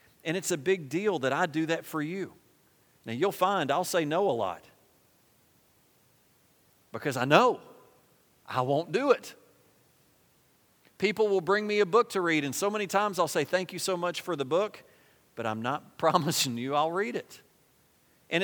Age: 40-59